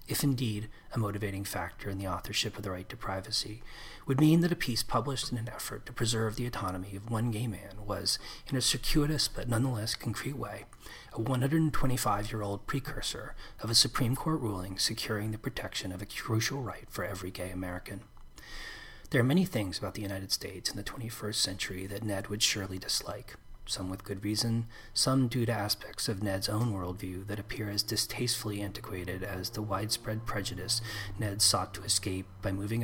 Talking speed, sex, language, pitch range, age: 185 wpm, male, English, 100-120 Hz, 40-59